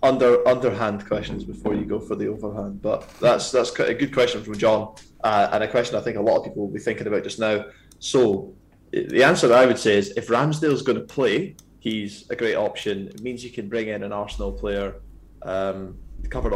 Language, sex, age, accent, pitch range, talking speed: English, male, 20-39, British, 100-120 Hz, 225 wpm